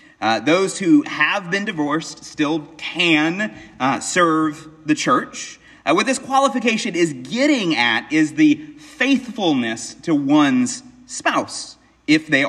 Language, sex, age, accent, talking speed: English, male, 30-49, American, 130 wpm